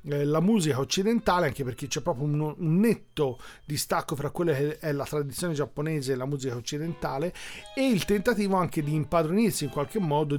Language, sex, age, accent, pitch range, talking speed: Italian, male, 40-59, native, 140-175 Hz, 175 wpm